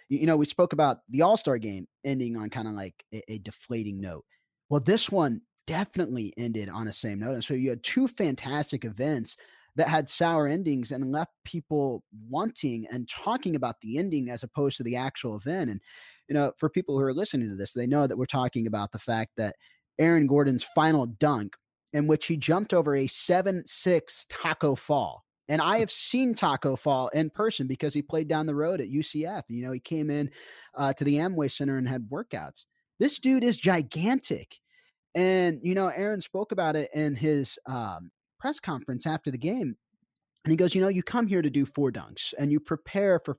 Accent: American